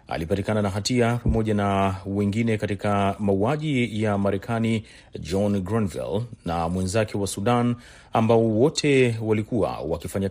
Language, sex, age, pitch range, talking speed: Swahili, male, 30-49, 95-115 Hz, 115 wpm